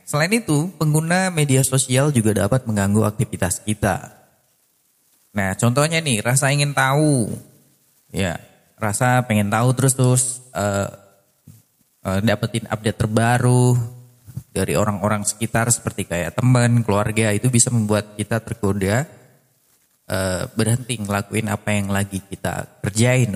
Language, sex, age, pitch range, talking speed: Indonesian, male, 20-39, 105-145 Hz, 120 wpm